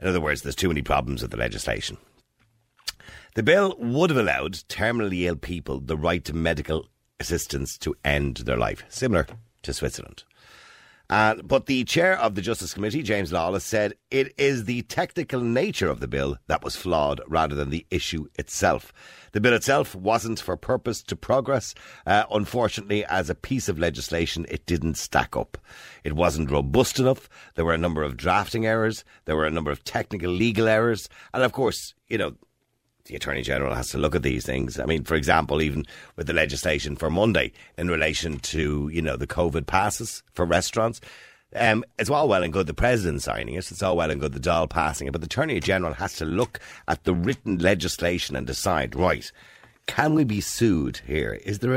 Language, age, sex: English, 60-79, male